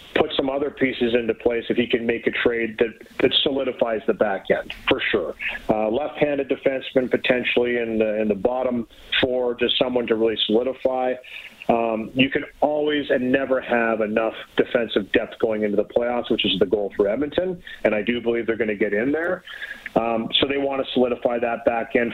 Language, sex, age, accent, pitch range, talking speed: English, male, 40-59, American, 115-135 Hz, 200 wpm